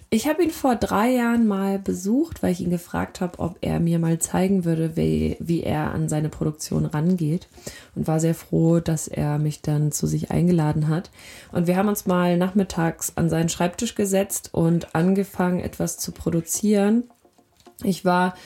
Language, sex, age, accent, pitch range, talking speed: German, female, 20-39, German, 155-185 Hz, 180 wpm